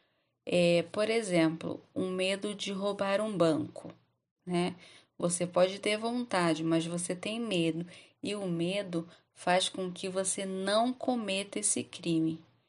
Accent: Brazilian